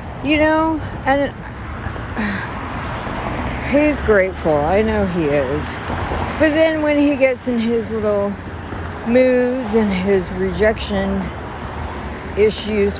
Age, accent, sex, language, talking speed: 50-69, American, female, English, 105 wpm